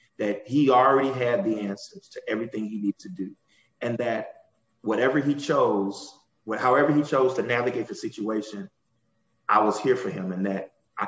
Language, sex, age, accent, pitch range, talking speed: English, male, 30-49, American, 110-155 Hz, 180 wpm